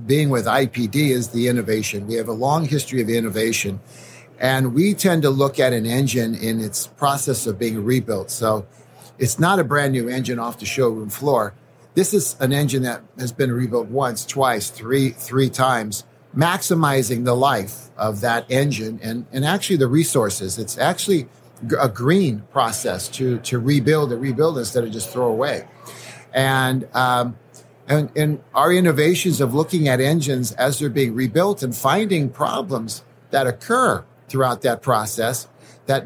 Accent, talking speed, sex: American, 165 wpm, male